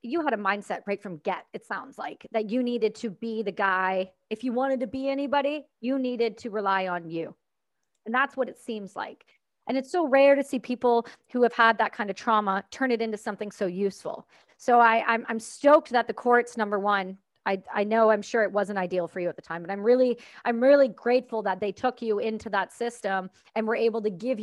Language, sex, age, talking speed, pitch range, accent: English, female, 40-59, 235 wpm, 205-255 Hz, American